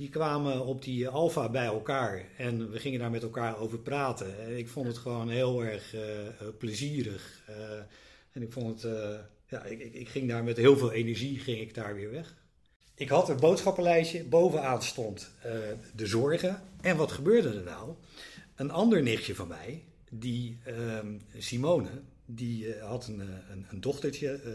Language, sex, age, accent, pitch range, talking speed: Dutch, male, 50-69, Dutch, 110-140 Hz, 175 wpm